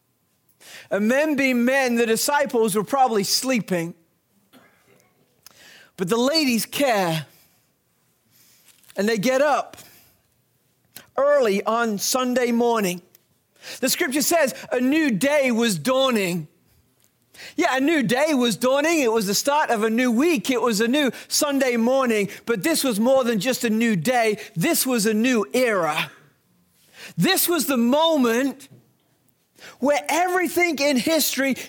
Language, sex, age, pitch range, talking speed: English, male, 50-69, 220-280 Hz, 135 wpm